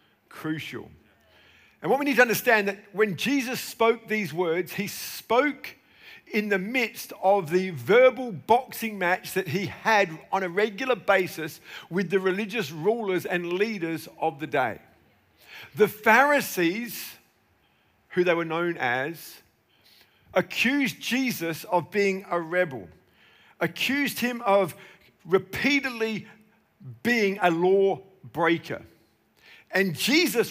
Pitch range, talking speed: 180-230 Hz, 120 wpm